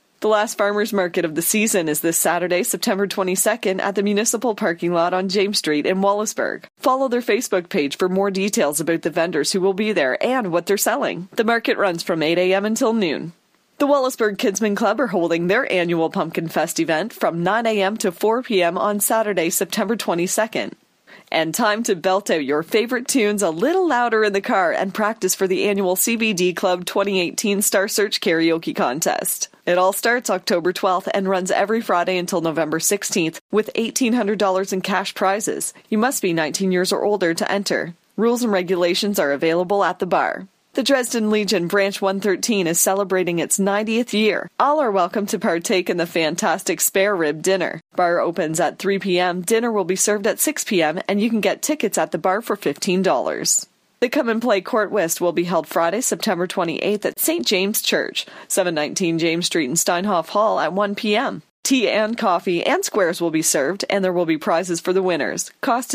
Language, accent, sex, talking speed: English, American, female, 195 wpm